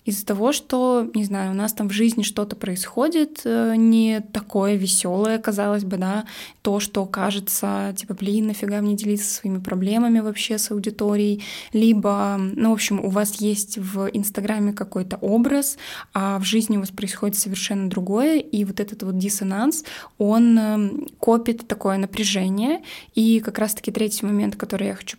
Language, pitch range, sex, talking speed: Russian, 200-235 Hz, female, 160 wpm